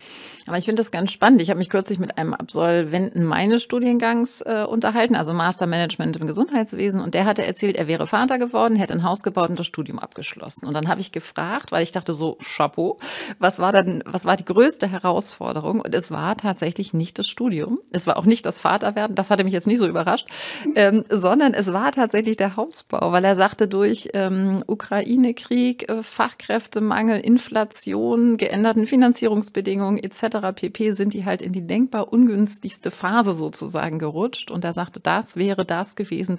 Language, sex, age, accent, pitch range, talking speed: German, female, 30-49, German, 180-225 Hz, 185 wpm